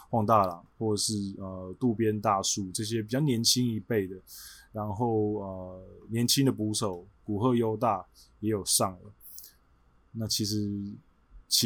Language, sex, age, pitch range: Chinese, male, 20-39, 95-120 Hz